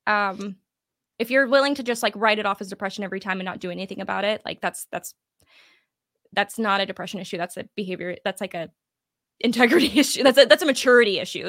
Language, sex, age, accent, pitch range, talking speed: English, female, 20-39, American, 195-255 Hz, 220 wpm